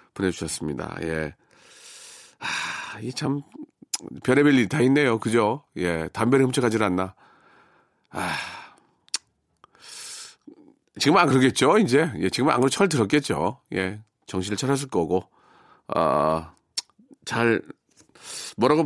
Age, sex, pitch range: 40-59, male, 110-165 Hz